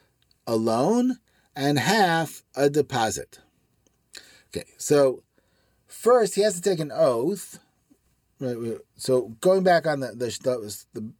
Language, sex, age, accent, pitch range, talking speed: English, male, 40-59, American, 125-180 Hz, 135 wpm